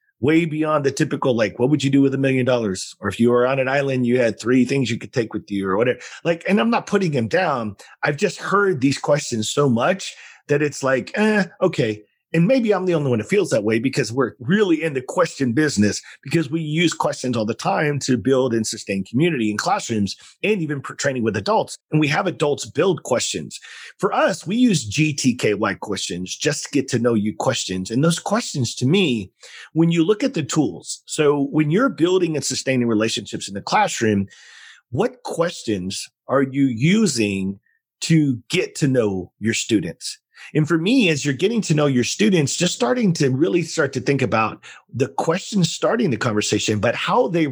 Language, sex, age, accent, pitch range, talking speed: English, male, 40-59, American, 120-165 Hz, 205 wpm